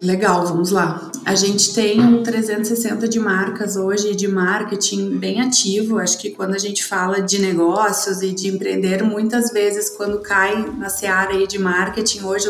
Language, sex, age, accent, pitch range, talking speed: Portuguese, female, 20-39, Brazilian, 195-220 Hz, 175 wpm